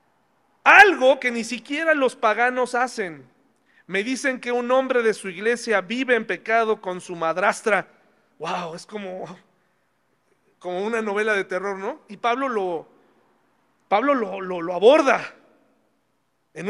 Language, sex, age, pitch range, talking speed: Spanish, male, 40-59, 205-285 Hz, 140 wpm